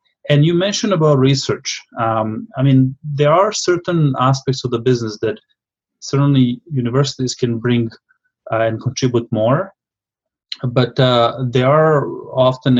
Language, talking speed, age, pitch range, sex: English, 135 wpm, 30-49, 115-145 Hz, male